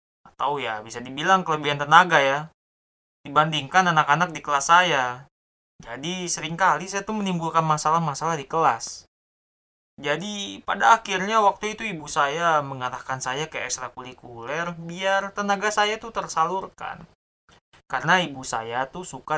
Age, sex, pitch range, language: 20-39, male, 130-180 Hz, Indonesian